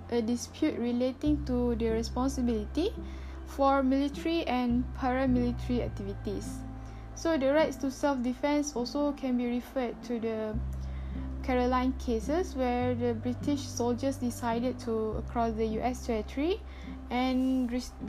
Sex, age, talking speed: female, 10-29, 120 wpm